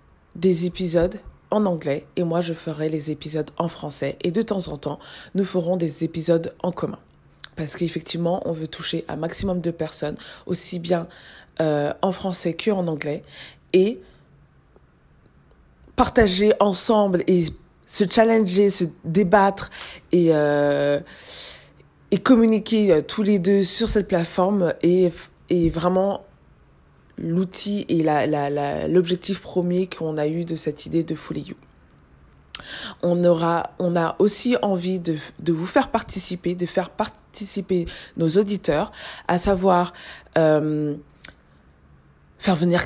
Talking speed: 135 wpm